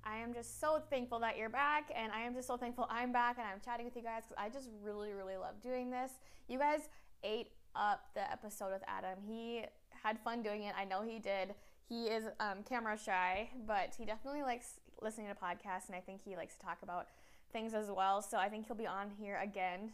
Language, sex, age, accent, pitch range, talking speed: English, female, 10-29, American, 195-250 Hz, 235 wpm